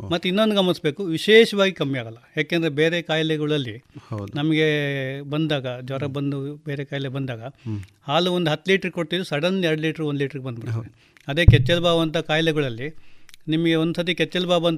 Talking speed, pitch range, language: 140 wpm, 135-170 Hz, Kannada